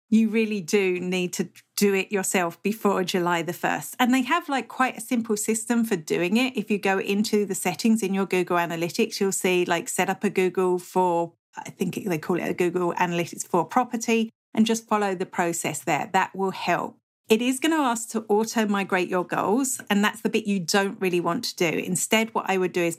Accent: British